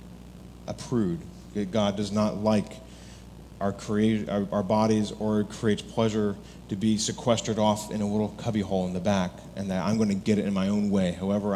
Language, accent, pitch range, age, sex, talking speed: English, American, 90-115 Hz, 30-49, male, 190 wpm